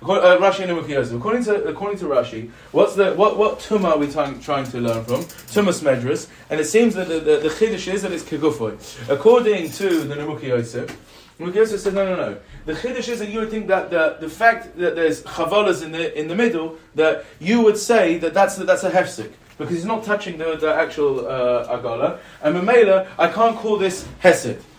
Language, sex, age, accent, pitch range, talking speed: English, male, 20-39, British, 155-215 Hz, 220 wpm